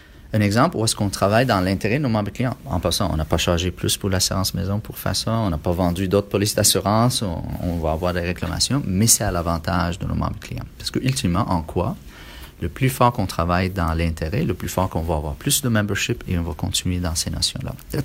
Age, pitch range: 30-49, 85-115 Hz